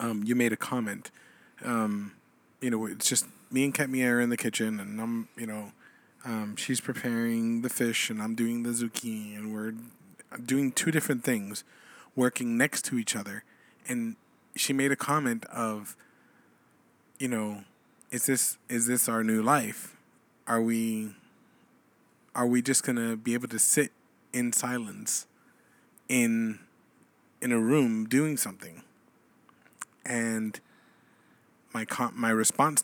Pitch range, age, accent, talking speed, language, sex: 115-140 Hz, 20-39, American, 145 wpm, English, male